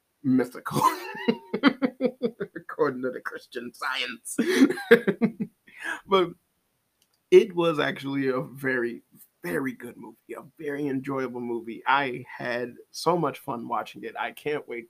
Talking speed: 115 wpm